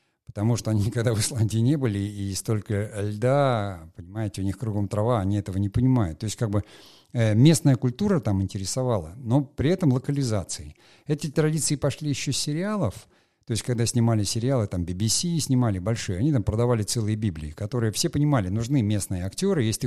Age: 50-69